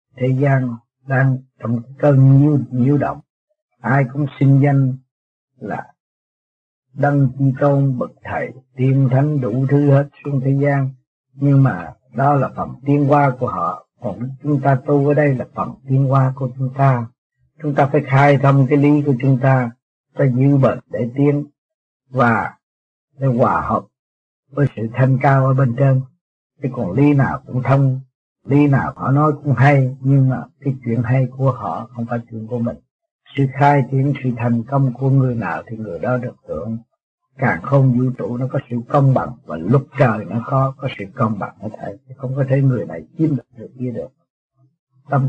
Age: 60-79